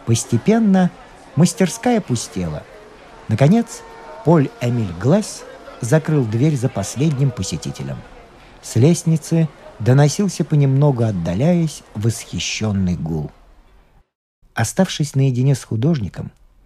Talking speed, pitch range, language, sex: 85 wpm, 125-180 Hz, Russian, male